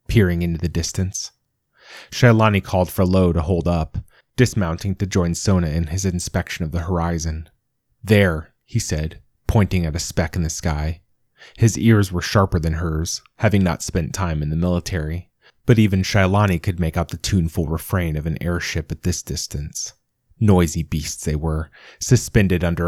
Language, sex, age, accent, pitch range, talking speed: English, male, 30-49, American, 80-100 Hz, 170 wpm